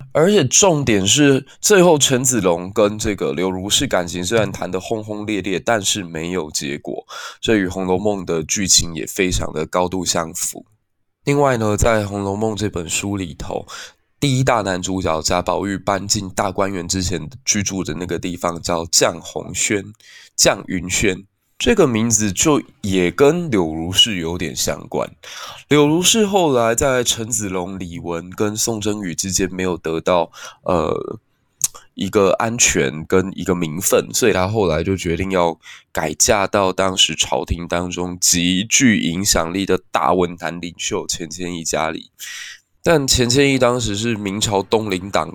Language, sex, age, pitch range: Chinese, male, 20-39, 90-110 Hz